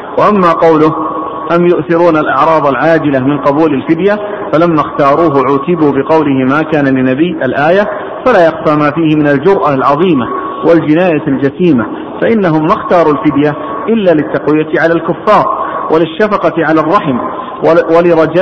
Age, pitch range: 50-69, 150-170 Hz